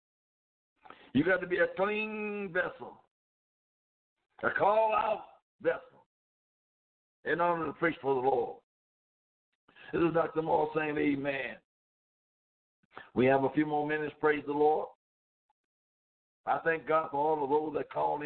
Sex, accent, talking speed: male, American, 135 wpm